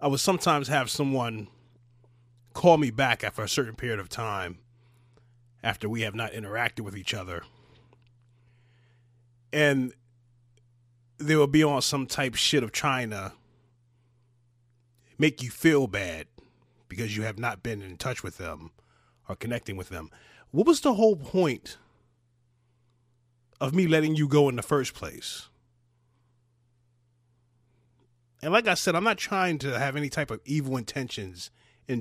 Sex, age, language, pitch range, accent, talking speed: male, 30-49, English, 120-145 Hz, American, 150 wpm